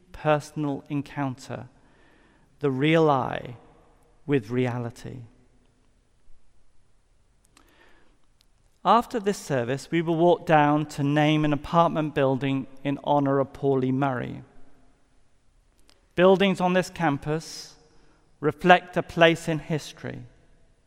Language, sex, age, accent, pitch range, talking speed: English, male, 40-59, British, 130-165 Hz, 95 wpm